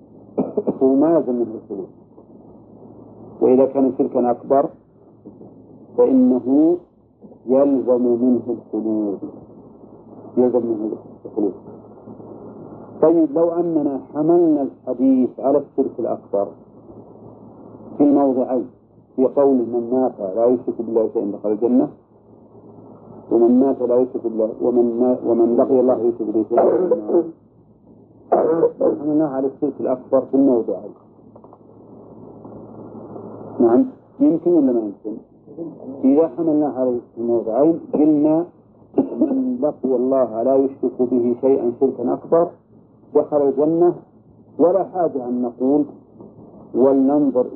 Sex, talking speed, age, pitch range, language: male, 100 wpm, 50-69, 120-160 Hz, Arabic